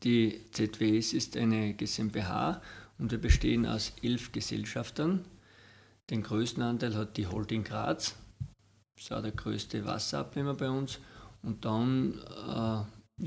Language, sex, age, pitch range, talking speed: German, male, 50-69, 110-125 Hz, 130 wpm